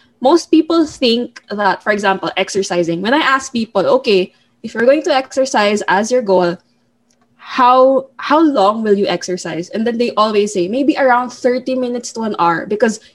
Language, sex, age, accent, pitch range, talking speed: English, female, 20-39, Filipino, 200-255 Hz, 180 wpm